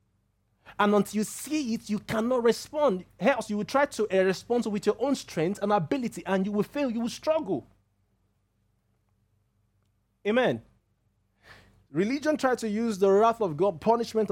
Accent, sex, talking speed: Nigerian, male, 165 wpm